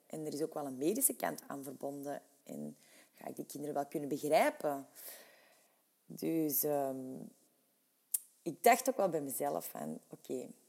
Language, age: English, 30-49